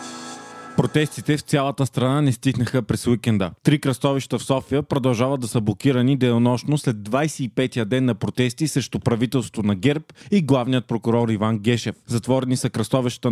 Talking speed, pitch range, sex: 155 wpm, 120-145 Hz, male